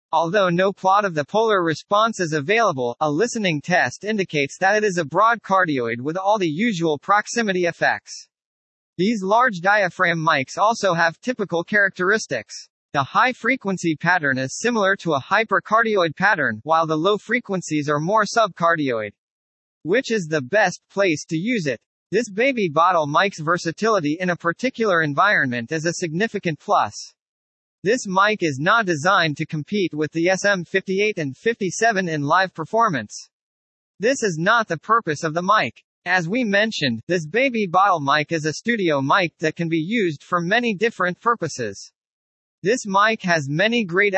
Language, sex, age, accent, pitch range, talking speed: English, male, 40-59, American, 160-215 Hz, 160 wpm